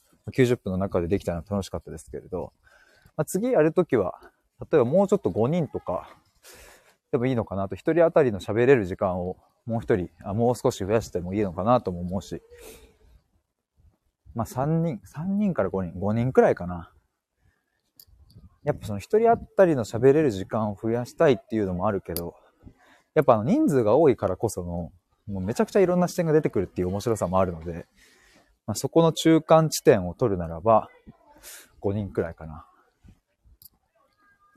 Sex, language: male, Japanese